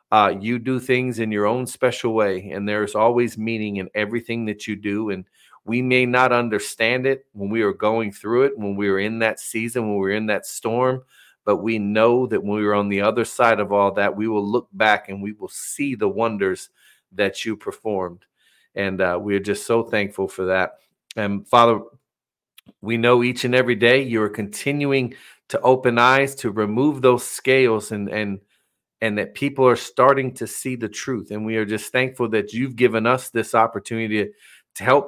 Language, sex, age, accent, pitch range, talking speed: English, male, 40-59, American, 105-125 Hz, 205 wpm